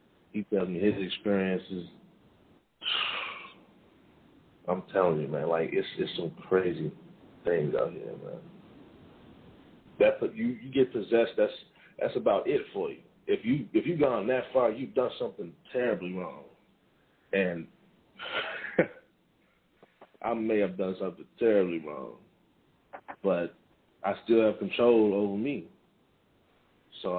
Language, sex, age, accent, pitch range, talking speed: English, male, 40-59, American, 95-115 Hz, 125 wpm